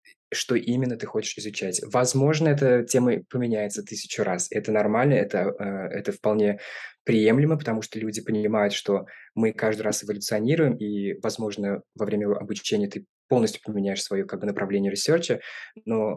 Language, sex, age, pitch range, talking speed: Russian, male, 20-39, 105-125 Hz, 140 wpm